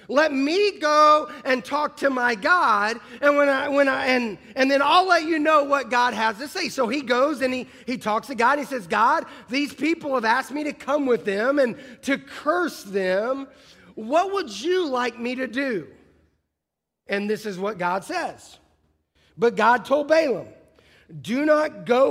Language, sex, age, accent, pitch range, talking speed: English, male, 30-49, American, 215-290 Hz, 195 wpm